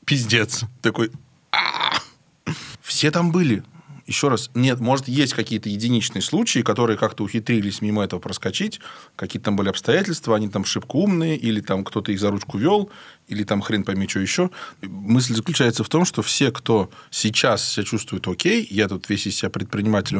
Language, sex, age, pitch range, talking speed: Russian, male, 20-39, 100-125 Hz, 170 wpm